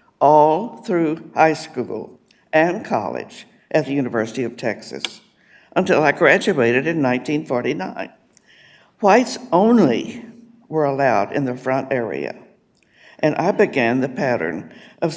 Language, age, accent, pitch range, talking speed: English, 60-79, American, 135-175 Hz, 120 wpm